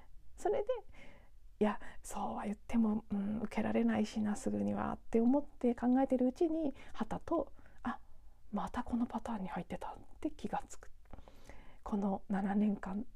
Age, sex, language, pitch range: 40-59, female, Japanese, 205-260 Hz